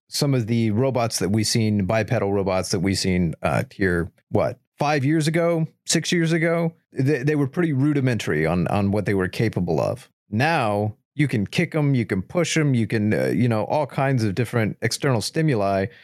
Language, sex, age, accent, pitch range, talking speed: English, male, 30-49, American, 105-140 Hz, 200 wpm